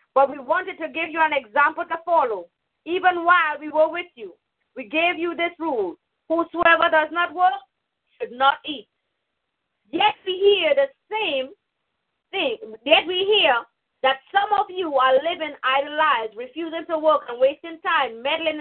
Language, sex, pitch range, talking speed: English, female, 275-350 Hz, 170 wpm